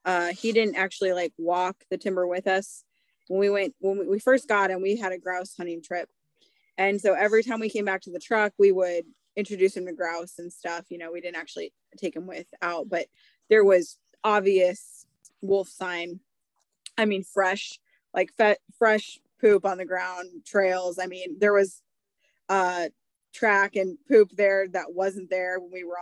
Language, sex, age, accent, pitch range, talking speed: English, female, 20-39, American, 175-200 Hz, 190 wpm